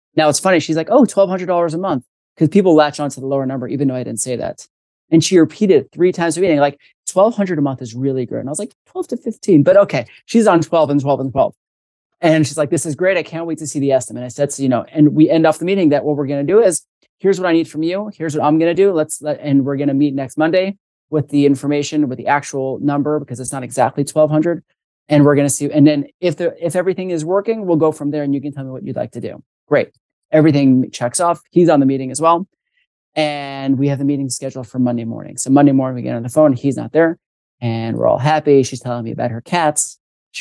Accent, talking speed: American, 275 wpm